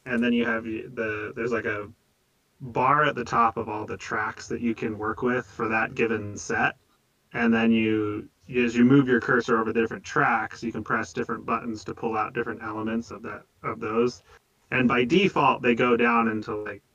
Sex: male